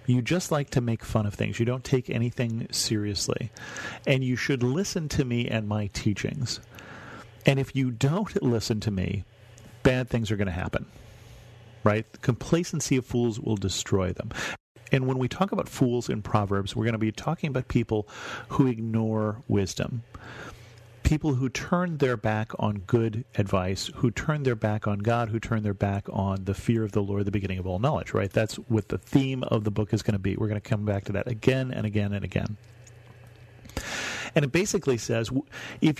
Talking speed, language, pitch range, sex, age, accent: 200 wpm, English, 110-130 Hz, male, 40-59, American